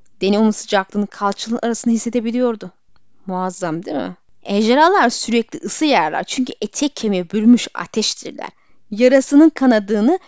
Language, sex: Turkish, female